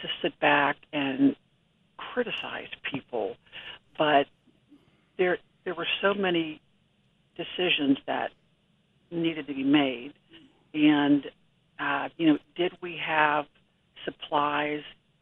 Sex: female